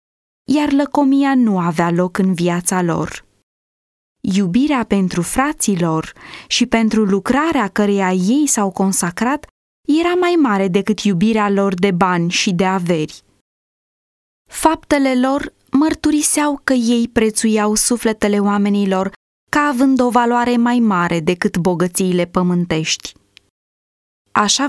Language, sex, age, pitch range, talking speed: English, female, 20-39, 190-265 Hz, 115 wpm